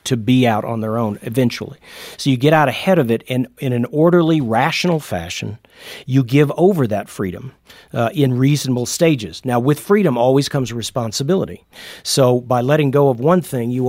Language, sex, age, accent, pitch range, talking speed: English, male, 40-59, American, 120-150 Hz, 185 wpm